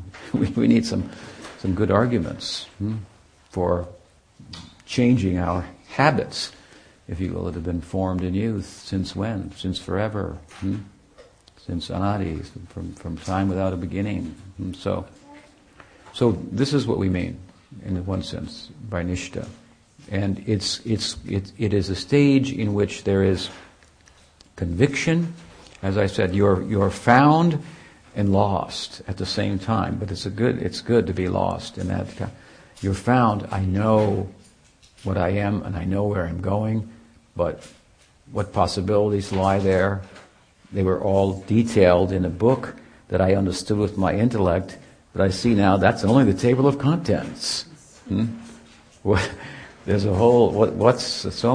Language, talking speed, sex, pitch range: English, 155 wpm, male, 95-115 Hz